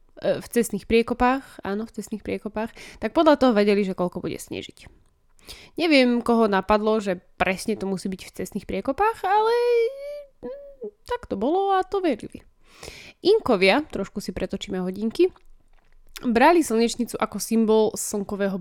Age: 20-39